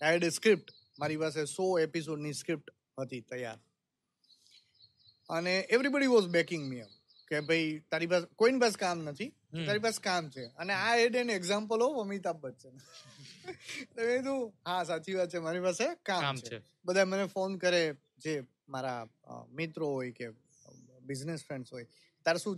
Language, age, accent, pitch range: Gujarati, 20-39, native, 140-195 Hz